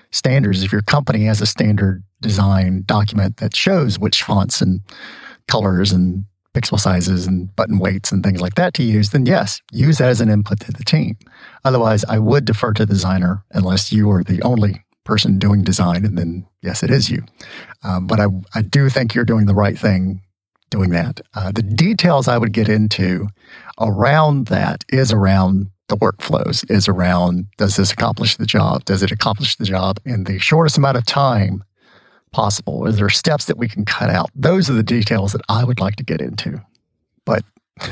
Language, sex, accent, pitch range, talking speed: English, male, American, 95-120 Hz, 195 wpm